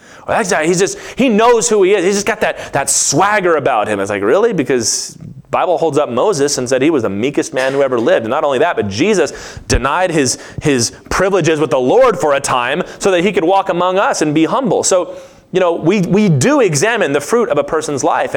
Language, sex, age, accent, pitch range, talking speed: English, male, 30-49, American, 140-200 Hz, 240 wpm